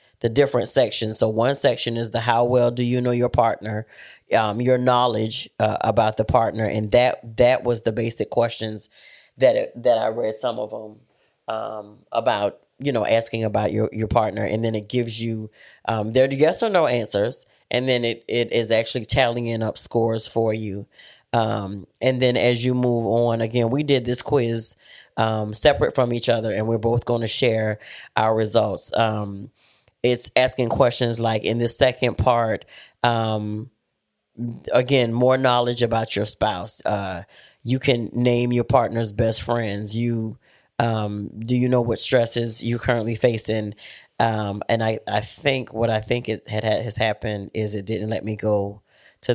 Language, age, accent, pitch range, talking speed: English, 30-49, American, 110-120 Hz, 180 wpm